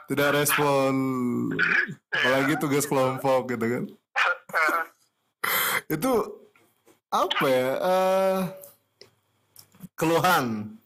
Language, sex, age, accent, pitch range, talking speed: Indonesian, male, 20-39, native, 110-135 Hz, 65 wpm